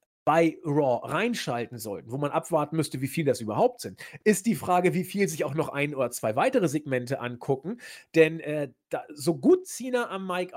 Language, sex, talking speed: German, male, 200 wpm